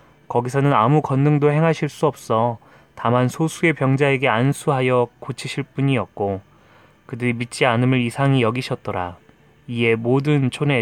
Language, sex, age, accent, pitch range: Korean, male, 20-39, native, 115-140 Hz